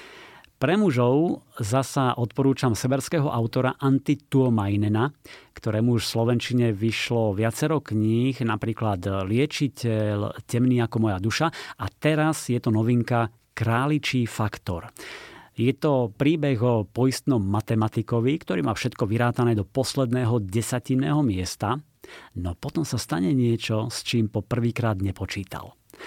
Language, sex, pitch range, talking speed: Slovak, male, 110-135 Hz, 115 wpm